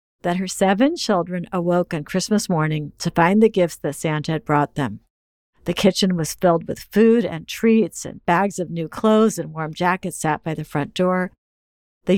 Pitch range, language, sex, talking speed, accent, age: 160-205 Hz, English, female, 190 wpm, American, 50-69